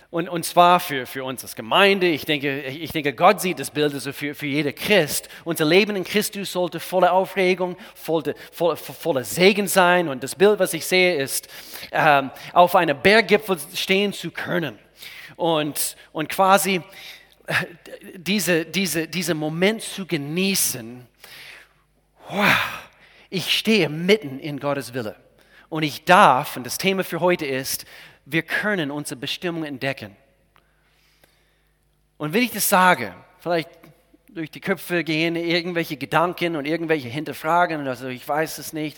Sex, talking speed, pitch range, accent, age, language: male, 150 wpm, 145-180 Hz, German, 40-59, German